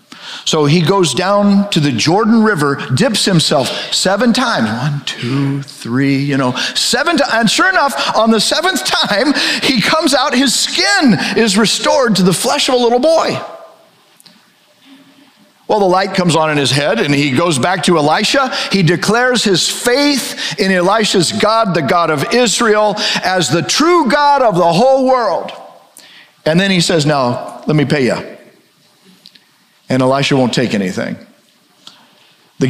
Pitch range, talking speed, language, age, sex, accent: 145-220 Hz, 160 wpm, English, 50-69, male, American